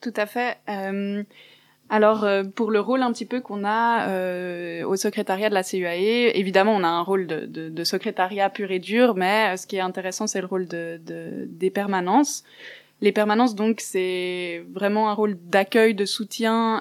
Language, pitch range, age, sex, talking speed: French, 180-215 Hz, 20-39, female, 195 wpm